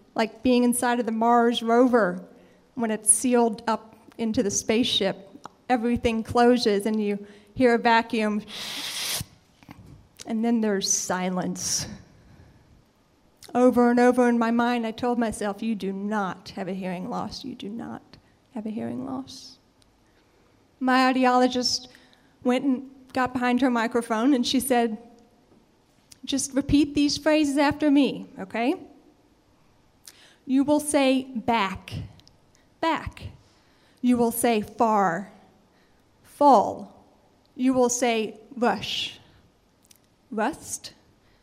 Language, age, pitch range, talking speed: English, 30-49, 225-260 Hz, 115 wpm